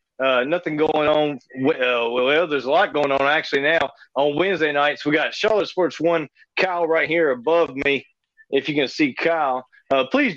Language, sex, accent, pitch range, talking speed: English, male, American, 140-170 Hz, 190 wpm